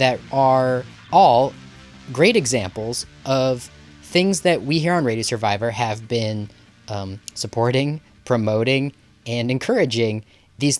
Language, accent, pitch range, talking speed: English, American, 110-150 Hz, 115 wpm